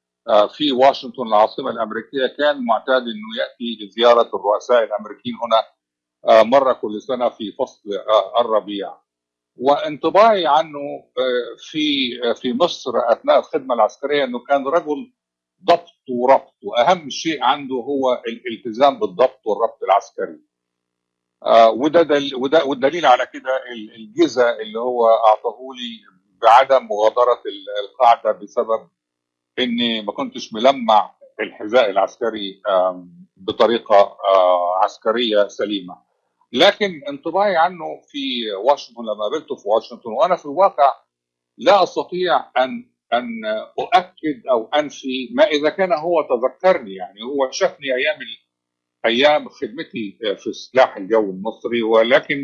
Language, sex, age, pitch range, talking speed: Arabic, male, 50-69, 105-155 Hz, 110 wpm